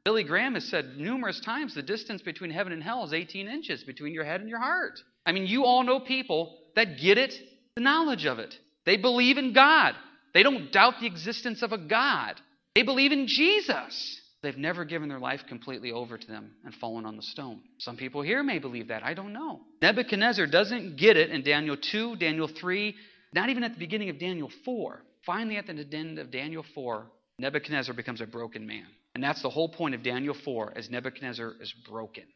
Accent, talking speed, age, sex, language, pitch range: American, 210 wpm, 40-59, male, English, 140-210 Hz